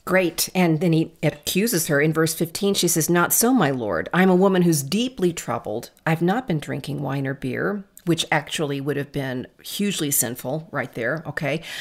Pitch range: 150-195 Hz